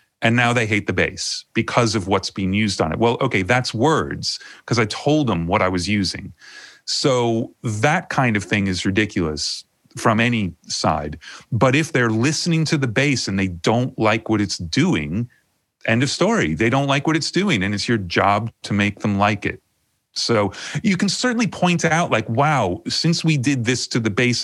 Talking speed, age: 200 wpm, 30-49